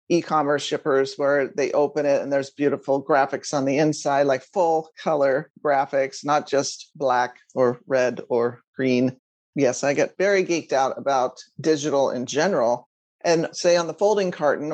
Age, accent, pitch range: 40-59, American, 145-190 Hz